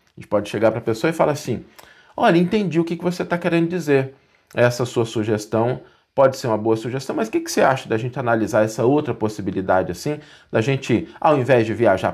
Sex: male